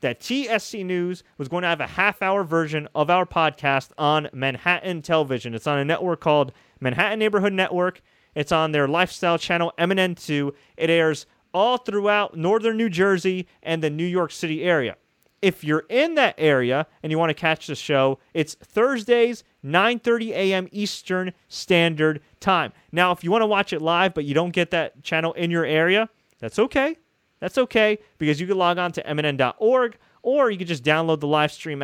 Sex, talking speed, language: male, 185 wpm, English